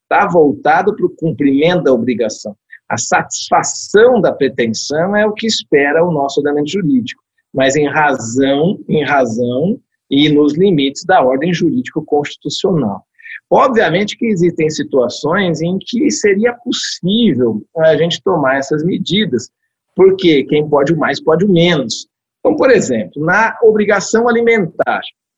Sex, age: male, 50-69